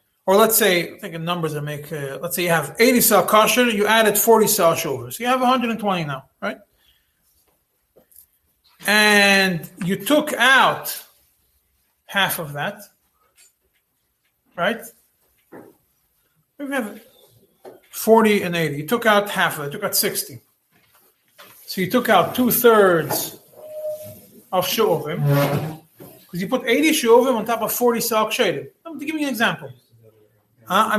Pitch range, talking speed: 170-230 Hz, 145 wpm